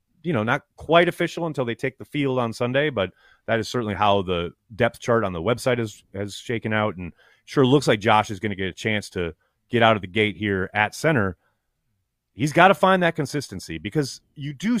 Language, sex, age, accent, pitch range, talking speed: English, male, 30-49, American, 110-160 Hz, 225 wpm